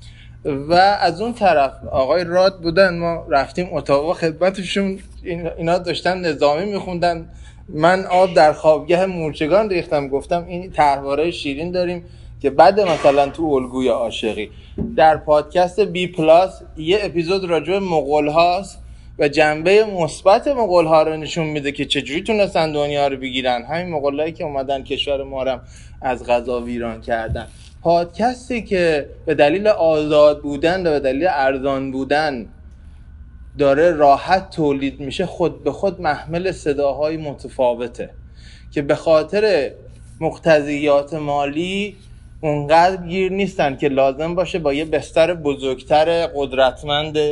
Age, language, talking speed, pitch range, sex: 20-39, Persian, 130 wpm, 135-170 Hz, male